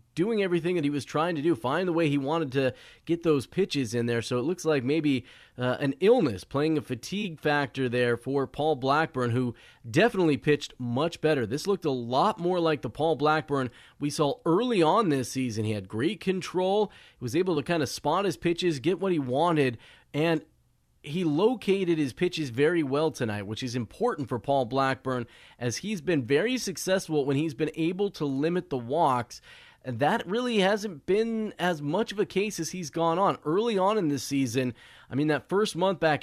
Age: 30-49